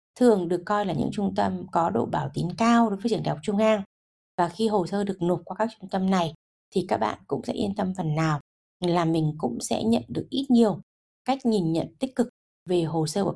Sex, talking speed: female, 250 wpm